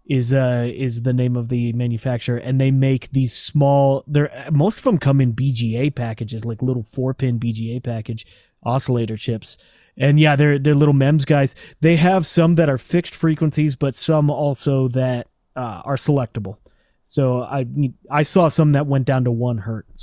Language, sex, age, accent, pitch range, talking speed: English, male, 30-49, American, 115-145 Hz, 185 wpm